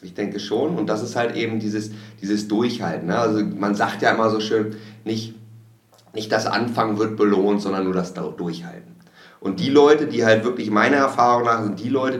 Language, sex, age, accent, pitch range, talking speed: German, male, 30-49, German, 105-135 Hz, 200 wpm